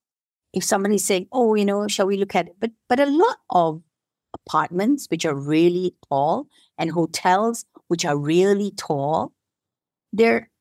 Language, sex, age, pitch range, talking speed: English, female, 50-69, 170-225 Hz, 160 wpm